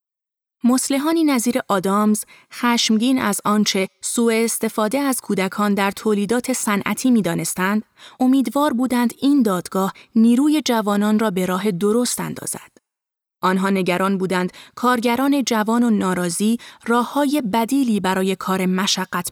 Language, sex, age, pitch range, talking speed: Persian, female, 30-49, 195-235 Hz, 120 wpm